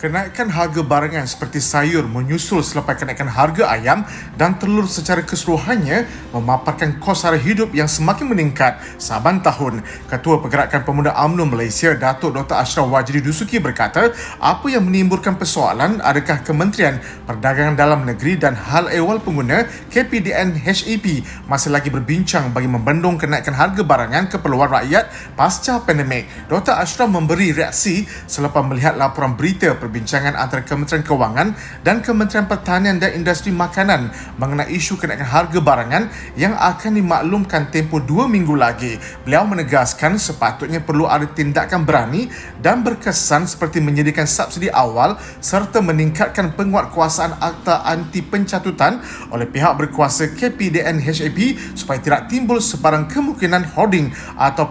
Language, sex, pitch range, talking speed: Malay, male, 145-190 Hz, 135 wpm